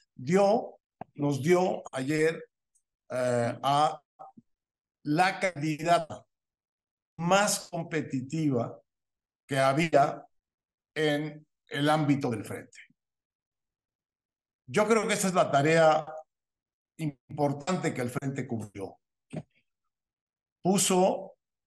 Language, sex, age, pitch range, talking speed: Spanish, male, 50-69, 125-165 Hz, 85 wpm